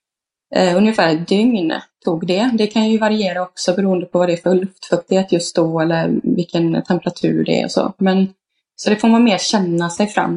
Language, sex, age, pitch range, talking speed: Swedish, female, 20-39, 175-205 Hz, 210 wpm